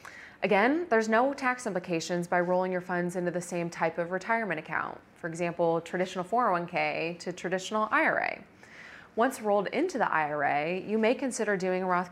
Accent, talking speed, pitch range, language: American, 170 wpm, 170-210 Hz, English